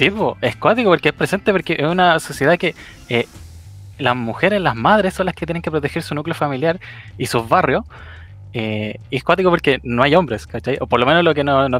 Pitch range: 120-145 Hz